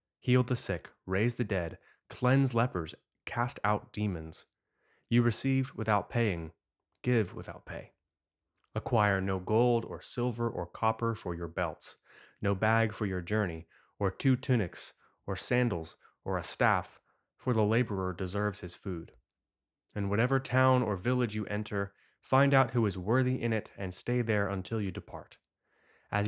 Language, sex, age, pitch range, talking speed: English, male, 20-39, 95-120 Hz, 155 wpm